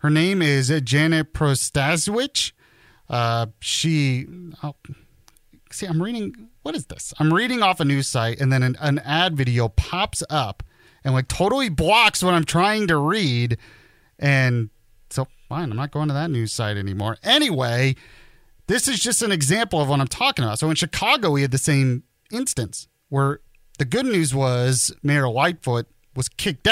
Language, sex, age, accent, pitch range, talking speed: English, male, 30-49, American, 120-160 Hz, 165 wpm